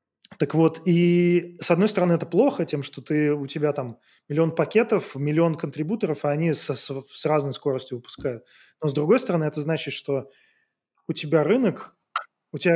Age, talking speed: 20-39, 170 wpm